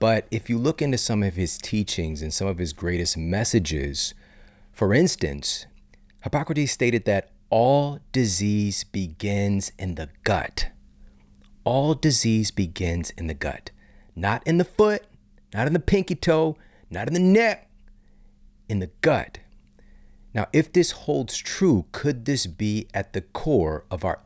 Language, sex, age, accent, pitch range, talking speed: English, male, 40-59, American, 90-125 Hz, 150 wpm